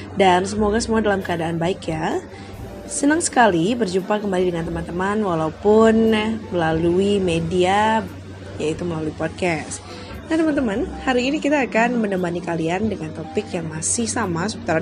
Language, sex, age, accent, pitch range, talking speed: Indonesian, female, 20-39, native, 170-225 Hz, 135 wpm